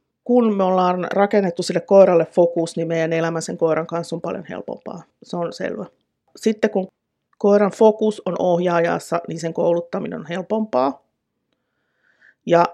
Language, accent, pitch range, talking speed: Finnish, native, 165-190 Hz, 145 wpm